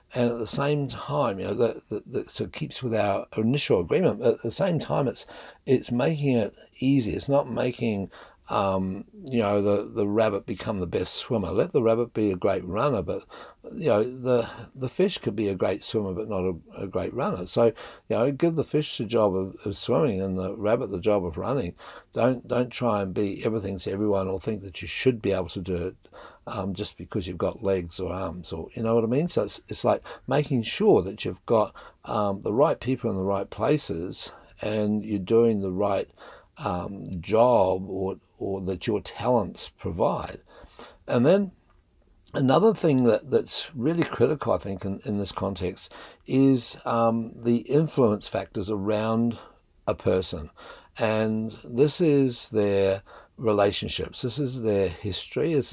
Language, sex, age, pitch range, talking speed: English, male, 60-79, 95-125 Hz, 185 wpm